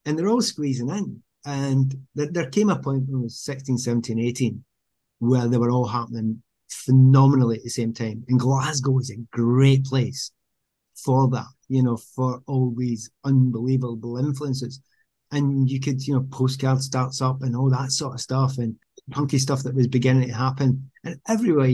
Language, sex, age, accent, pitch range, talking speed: English, male, 30-49, British, 120-140 Hz, 180 wpm